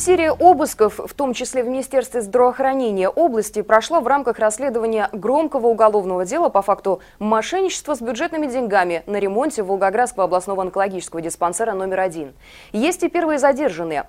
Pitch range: 195-265 Hz